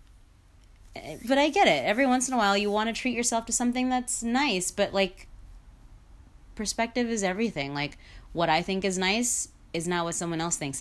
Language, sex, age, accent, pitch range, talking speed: English, female, 30-49, American, 135-180 Hz, 195 wpm